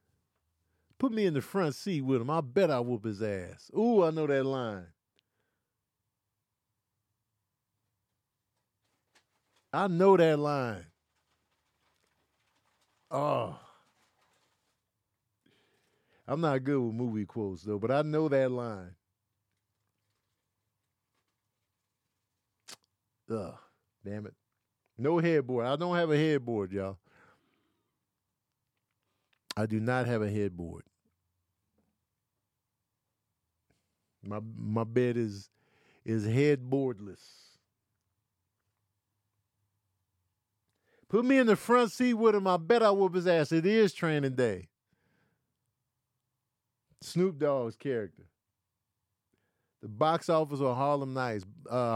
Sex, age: male, 50-69